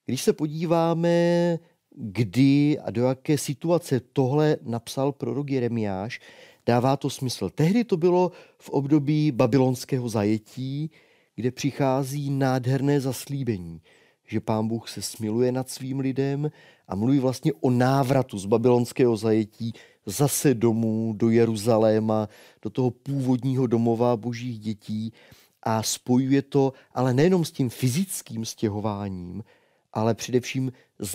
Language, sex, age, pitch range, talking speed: Czech, male, 30-49, 115-145 Hz, 125 wpm